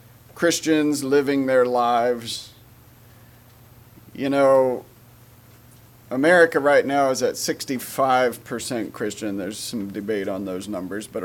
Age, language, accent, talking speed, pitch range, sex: 40-59, English, American, 105 wpm, 120-140 Hz, male